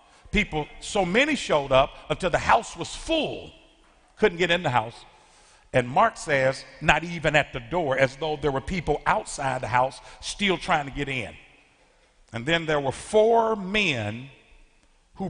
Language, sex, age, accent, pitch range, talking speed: English, male, 50-69, American, 125-180 Hz, 170 wpm